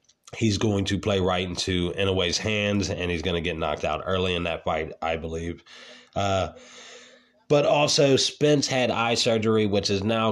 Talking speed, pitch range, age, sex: 180 wpm, 85-105 Hz, 30-49, male